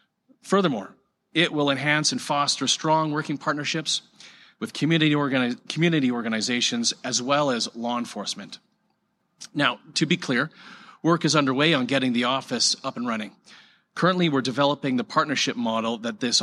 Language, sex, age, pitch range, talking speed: English, male, 40-59, 130-185 Hz, 145 wpm